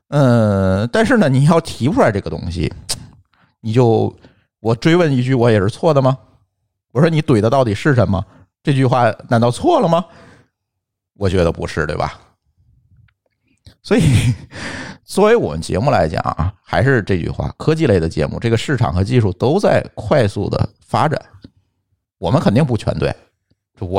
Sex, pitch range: male, 95-125 Hz